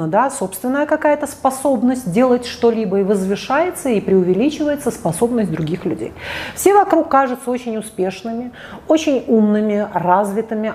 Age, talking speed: 30-49, 115 wpm